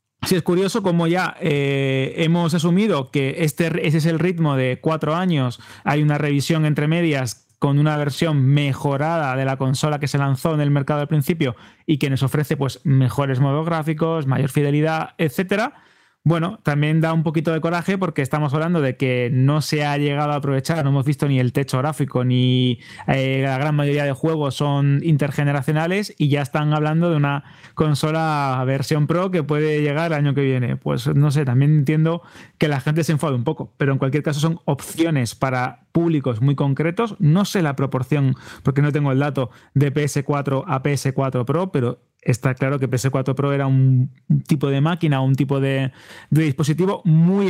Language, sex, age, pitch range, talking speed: Spanish, male, 20-39, 135-160 Hz, 190 wpm